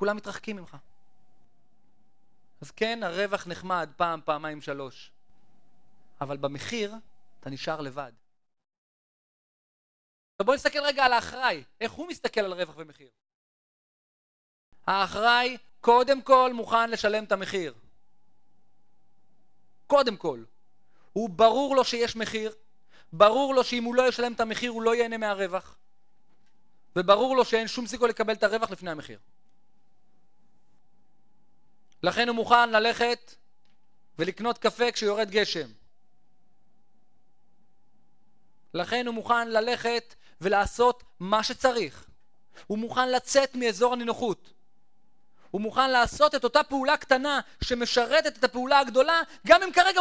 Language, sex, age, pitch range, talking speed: Hebrew, male, 30-49, 190-245 Hz, 115 wpm